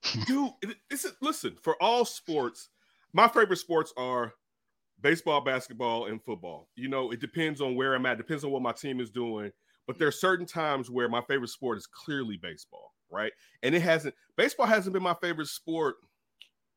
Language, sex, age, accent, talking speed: English, male, 30-49, American, 180 wpm